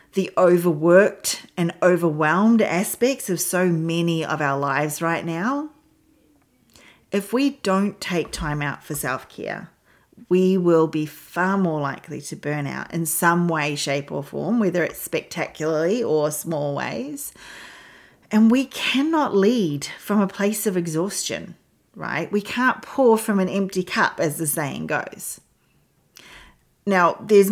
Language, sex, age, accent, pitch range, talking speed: English, female, 40-59, Australian, 155-200 Hz, 140 wpm